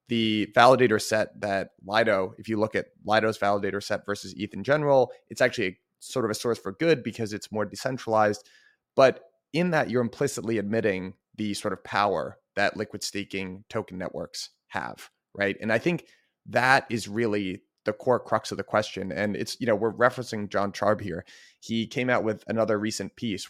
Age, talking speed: 30-49, 190 wpm